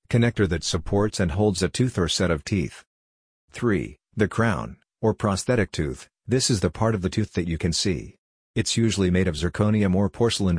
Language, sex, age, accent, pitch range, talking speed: English, male, 50-69, American, 90-105 Hz, 200 wpm